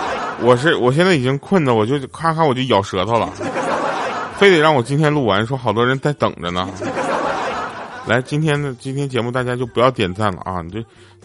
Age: 20-39